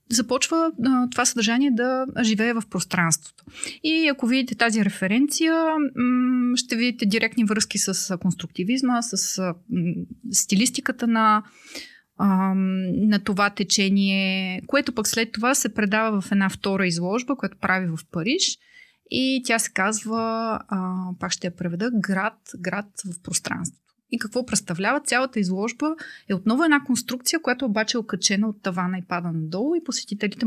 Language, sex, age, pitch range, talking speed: Bulgarian, female, 30-49, 190-245 Hz, 140 wpm